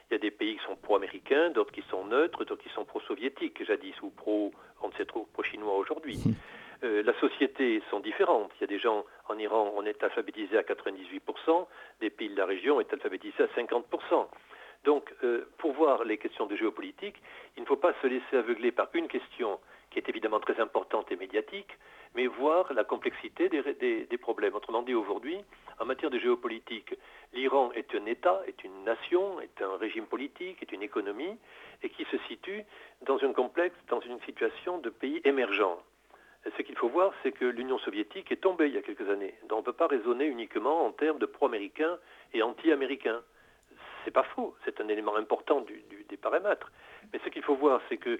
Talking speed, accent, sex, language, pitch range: 200 wpm, French, male, French, 345-415 Hz